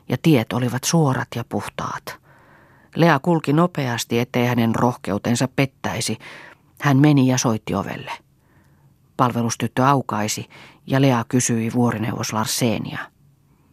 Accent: native